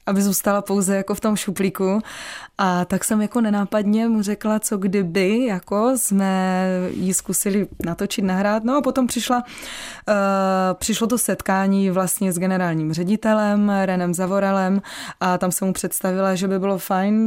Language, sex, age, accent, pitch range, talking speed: Czech, female, 20-39, native, 185-205 Hz, 150 wpm